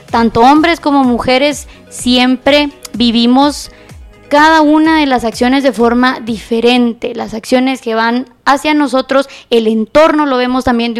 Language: Spanish